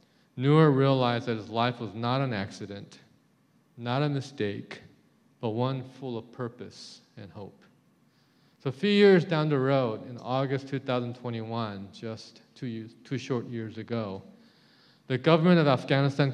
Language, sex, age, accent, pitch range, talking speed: English, male, 40-59, American, 115-140 Hz, 145 wpm